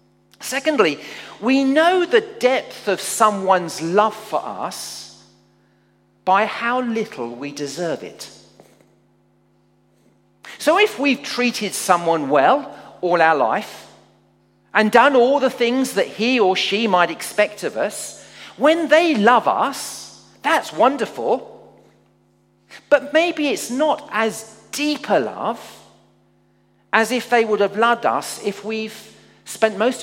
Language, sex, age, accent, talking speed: English, male, 40-59, British, 125 wpm